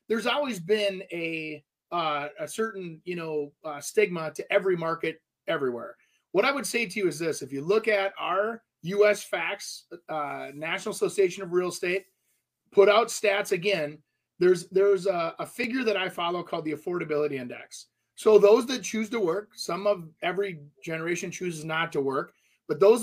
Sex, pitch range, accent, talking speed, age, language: male, 175-225 Hz, American, 175 wpm, 30-49, English